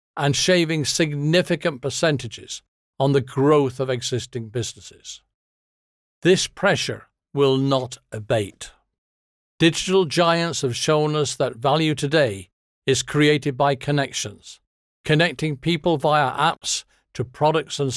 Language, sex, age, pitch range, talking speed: English, male, 50-69, 125-160 Hz, 115 wpm